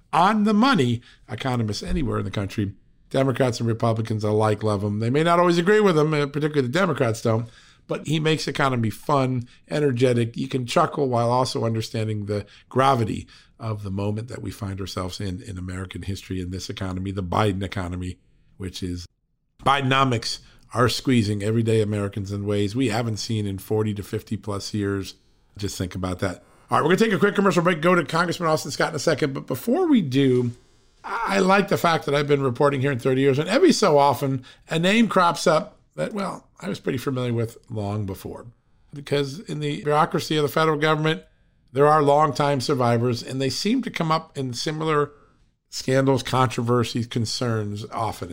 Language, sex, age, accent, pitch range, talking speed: English, male, 50-69, American, 110-150 Hz, 190 wpm